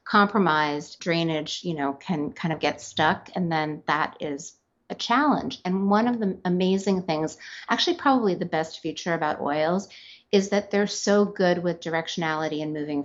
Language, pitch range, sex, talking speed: English, 155-185 Hz, female, 170 wpm